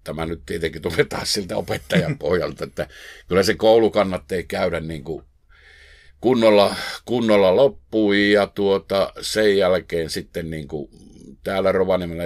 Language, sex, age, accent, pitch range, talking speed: Finnish, male, 60-79, native, 75-100 Hz, 120 wpm